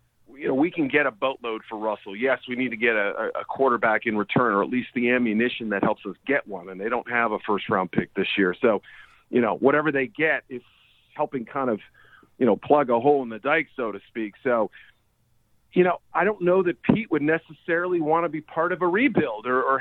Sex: male